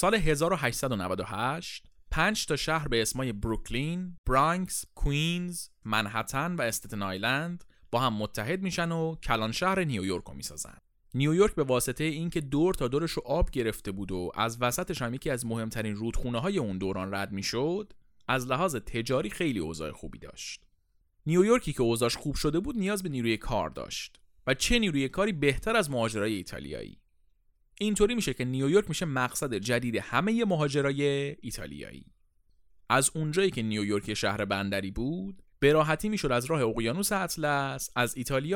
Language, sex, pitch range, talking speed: Persian, male, 110-170 Hz, 150 wpm